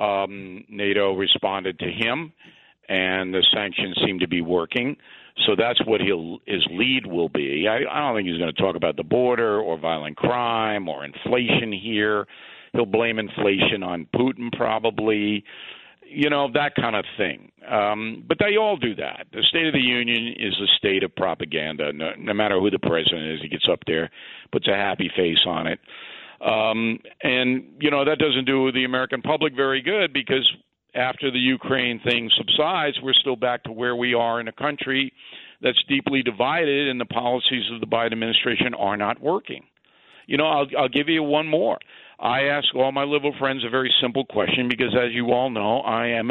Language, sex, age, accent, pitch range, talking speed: English, male, 50-69, American, 105-135 Hz, 190 wpm